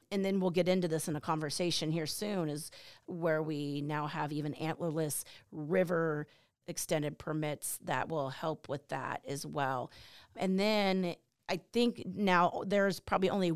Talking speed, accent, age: 160 wpm, American, 30-49